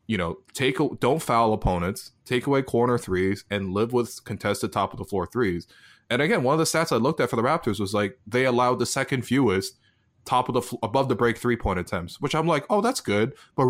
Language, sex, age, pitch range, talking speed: English, male, 20-39, 100-125 Hz, 235 wpm